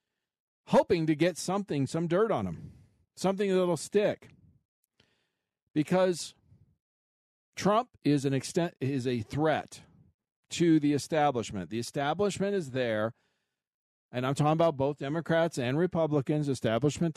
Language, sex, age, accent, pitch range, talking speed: English, male, 50-69, American, 130-170 Hz, 120 wpm